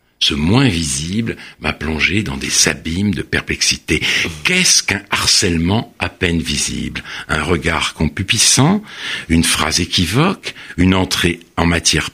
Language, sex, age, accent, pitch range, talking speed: French, male, 60-79, French, 90-140 Hz, 130 wpm